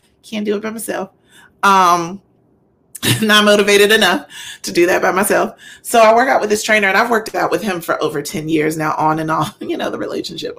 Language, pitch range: English, 180-245 Hz